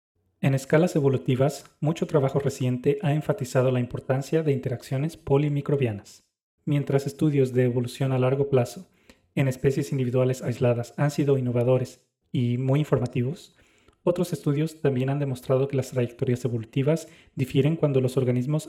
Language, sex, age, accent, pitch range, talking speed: Spanish, male, 30-49, Mexican, 125-145 Hz, 140 wpm